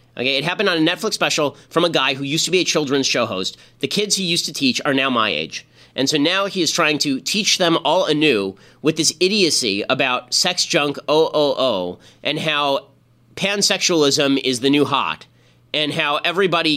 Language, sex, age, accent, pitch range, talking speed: English, male, 30-49, American, 135-180 Hz, 200 wpm